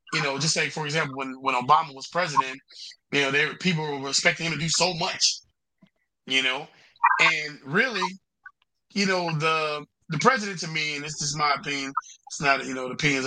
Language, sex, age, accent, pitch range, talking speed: English, male, 20-39, American, 145-195 Hz, 200 wpm